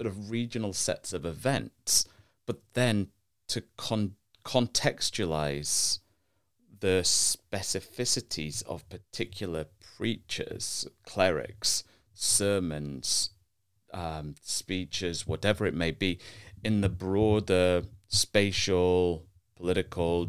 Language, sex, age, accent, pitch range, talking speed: English, male, 30-49, British, 85-105 Hz, 85 wpm